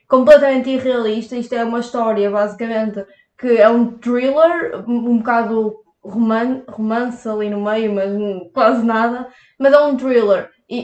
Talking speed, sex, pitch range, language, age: 145 wpm, female, 225-260 Hz, Portuguese, 20-39